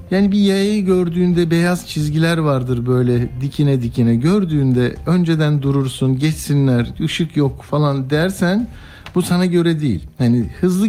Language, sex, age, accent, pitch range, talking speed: Turkish, male, 60-79, native, 120-175 Hz, 130 wpm